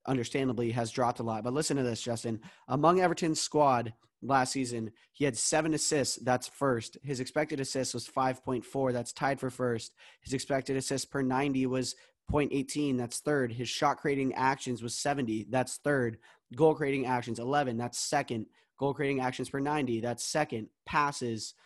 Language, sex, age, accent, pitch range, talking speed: English, male, 20-39, American, 125-145 Hz, 175 wpm